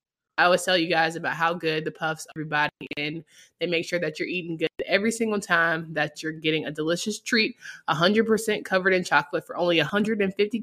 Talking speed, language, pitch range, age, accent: 200 wpm, English, 165-210 Hz, 20-39, American